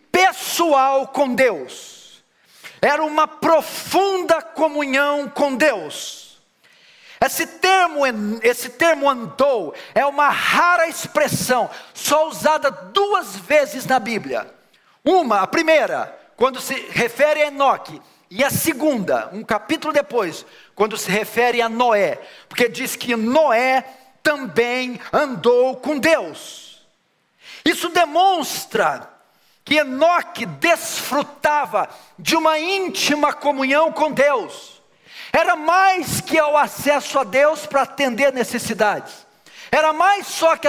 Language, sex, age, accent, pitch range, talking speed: Portuguese, male, 50-69, Brazilian, 265-325 Hz, 110 wpm